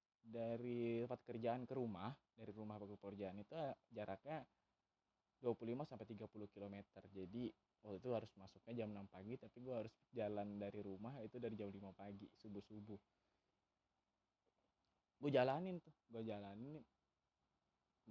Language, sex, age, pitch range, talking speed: Indonesian, male, 20-39, 100-125 Hz, 135 wpm